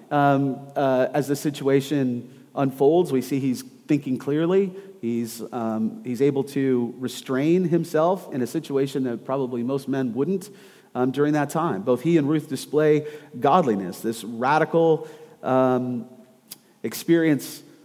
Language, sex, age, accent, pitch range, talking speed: English, male, 40-59, American, 125-155 Hz, 135 wpm